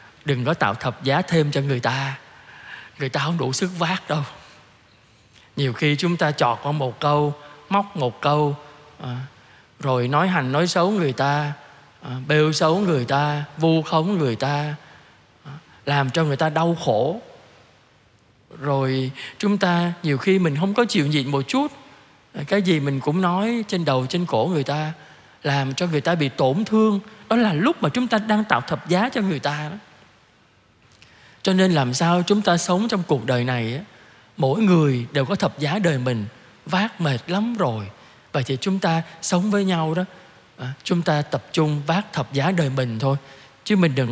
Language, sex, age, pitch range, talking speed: Vietnamese, male, 20-39, 135-175 Hz, 185 wpm